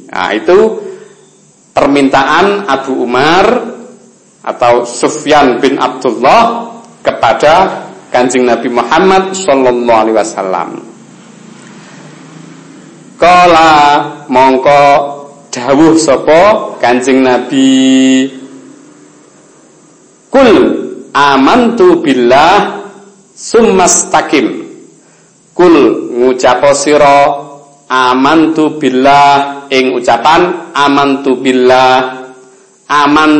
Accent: native